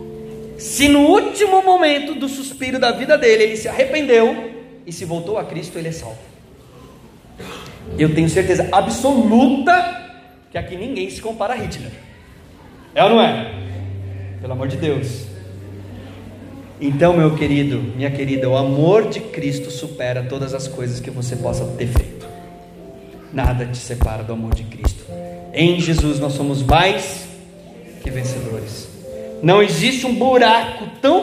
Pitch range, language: 125-190 Hz, Portuguese